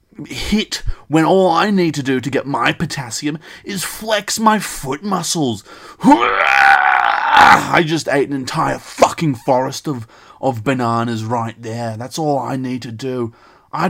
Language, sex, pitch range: English, male, 115-155 Hz